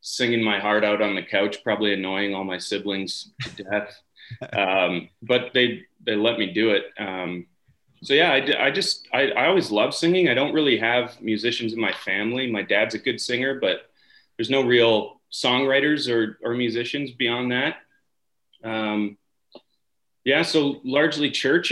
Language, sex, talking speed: English, male, 170 wpm